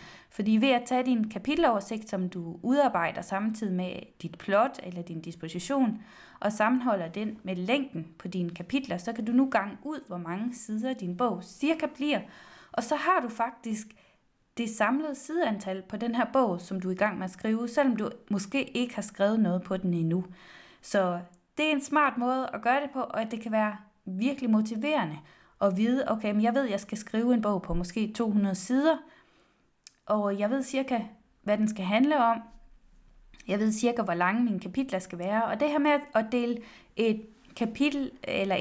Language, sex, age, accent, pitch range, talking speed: Danish, female, 20-39, native, 195-255 Hz, 195 wpm